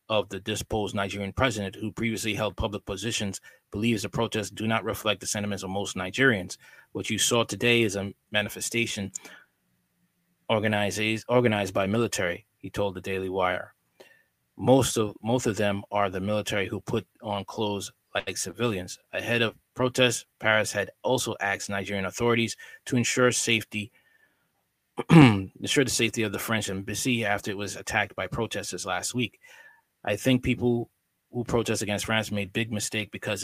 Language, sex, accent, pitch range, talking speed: English, male, American, 100-115 Hz, 160 wpm